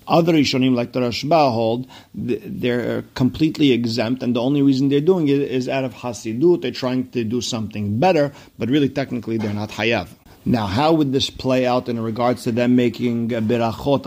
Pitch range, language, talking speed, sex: 110-130 Hz, English, 190 wpm, male